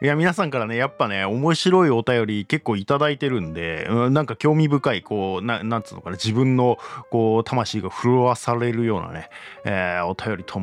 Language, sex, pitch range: Japanese, male, 100-140 Hz